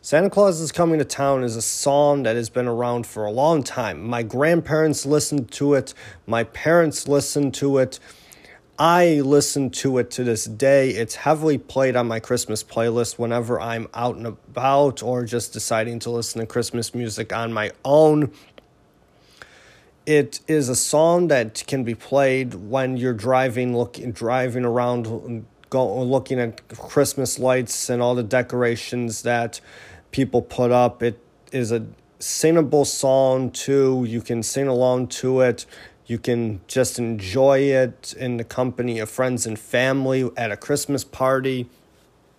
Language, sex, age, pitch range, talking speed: English, male, 30-49, 120-140 Hz, 160 wpm